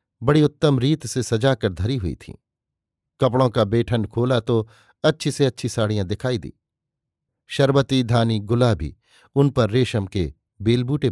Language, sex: Hindi, male